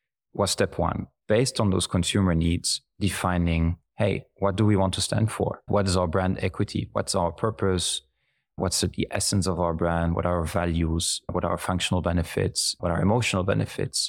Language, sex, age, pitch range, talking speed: English, male, 30-49, 90-100 Hz, 185 wpm